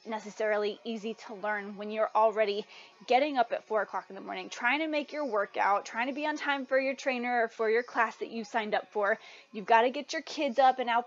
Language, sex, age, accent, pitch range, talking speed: English, female, 20-39, American, 215-275 Hz, 250 wpm